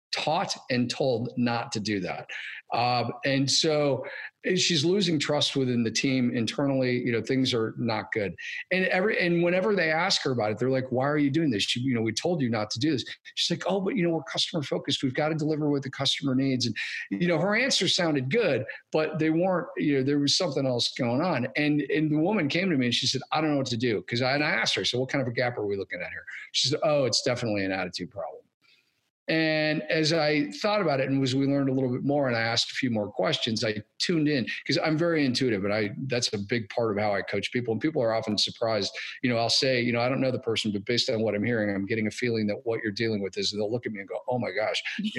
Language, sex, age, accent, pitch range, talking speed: English, male, 40-59, American, 115-150 Hz, 275 wpm